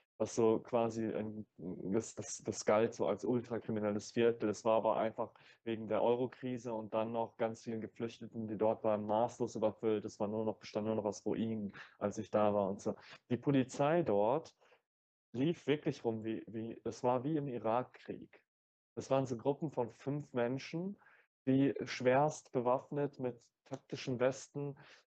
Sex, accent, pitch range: male, German, 110-125 Hz